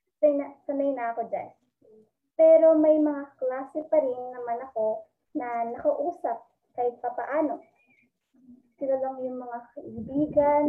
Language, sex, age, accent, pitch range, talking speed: Filipino, male, 20-39, native, 235-310 Hz, 125 wpm